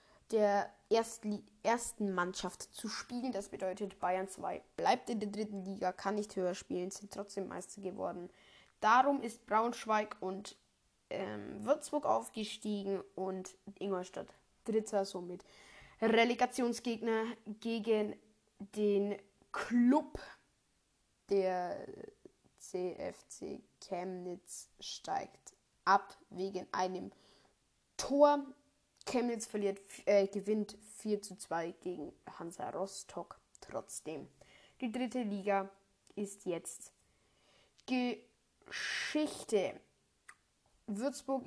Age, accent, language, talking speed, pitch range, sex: 20-39, German, German, 90 wpm, 190-225 Hz, female